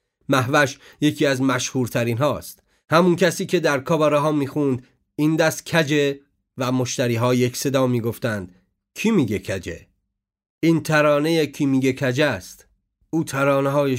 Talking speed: 140 wpm